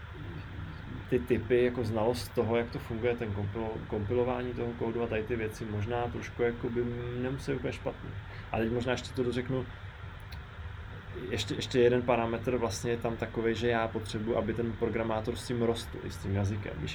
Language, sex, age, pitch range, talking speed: Czech, male, 20-39, 95-120 Hz, 175 wpm